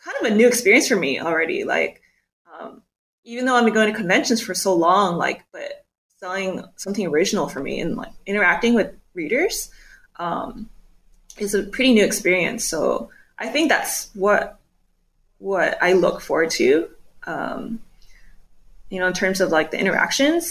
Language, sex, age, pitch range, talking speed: English, female, 20-39, 195-295 Hz, 165 wpm